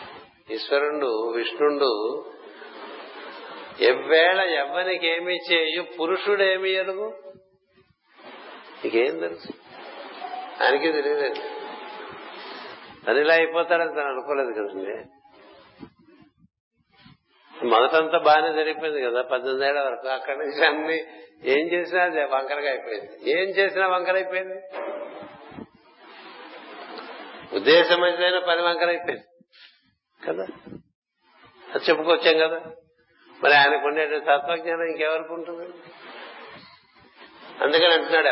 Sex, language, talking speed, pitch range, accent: male, Telugu, 75 wpm, 150-190 Hz, native